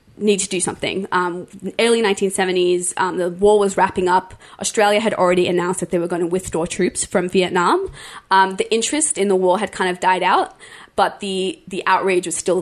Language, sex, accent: English, female, Australian